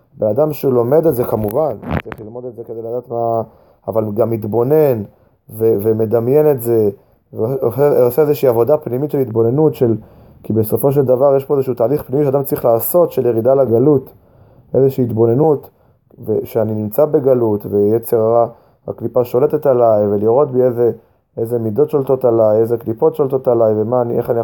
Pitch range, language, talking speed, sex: 115-145 Hz, Hebrew, 160 wpm, male